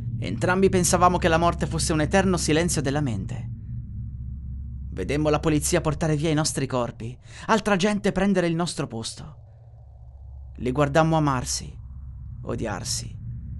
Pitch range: 110-165 Hz